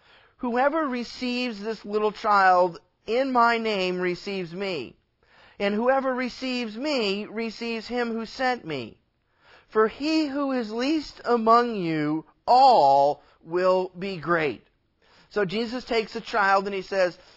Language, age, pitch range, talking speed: English, 30-49, 175-230 Hz, 130 wpm